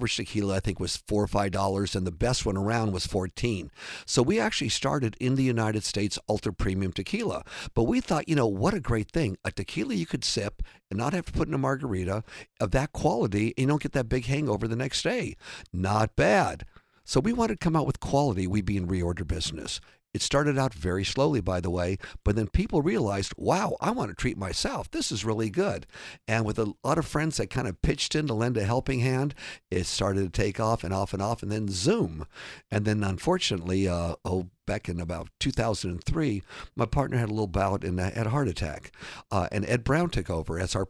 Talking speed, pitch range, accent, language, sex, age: 225 wpm, 95-125 Hz, American, English, male, 50-69